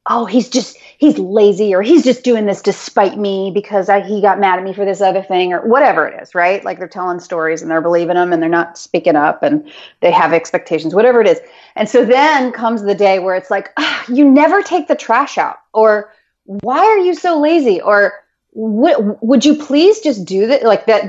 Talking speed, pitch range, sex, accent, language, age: 225 wpm, 185-250 Hz, female, American, English, 30-49